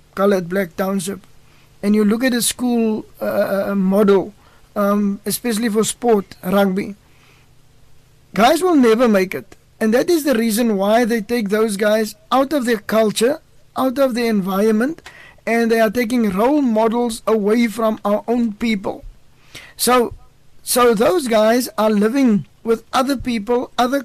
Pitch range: 205-235 Hz